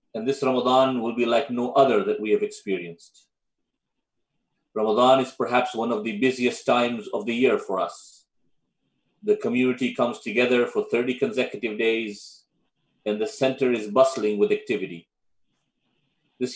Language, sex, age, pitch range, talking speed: English, male, 30-49, 115-140 Hz, 150 wpm